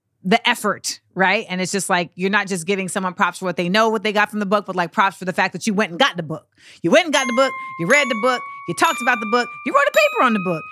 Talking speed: 325 wpm